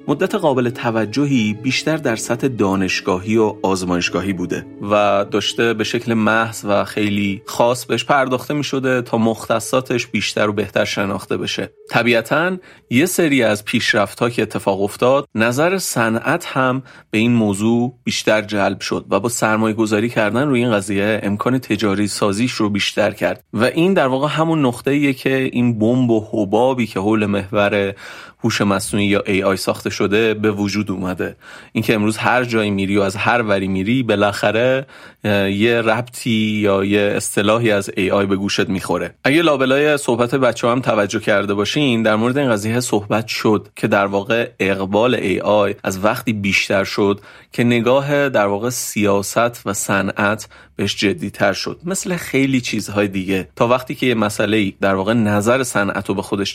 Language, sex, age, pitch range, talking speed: Persian, male, 30-49, 100-125 Hz, 160 wpm